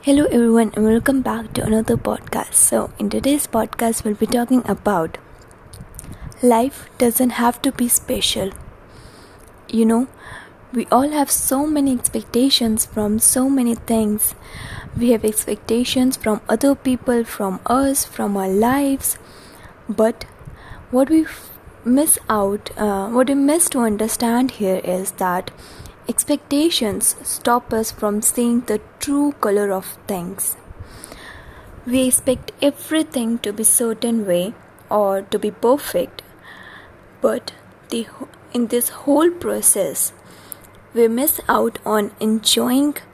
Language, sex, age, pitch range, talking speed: English, female, 20-39, 210-260 Hz, 125 wpm